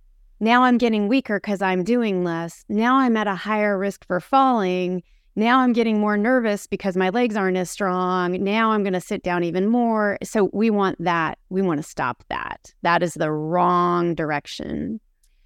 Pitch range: 180-220 Hz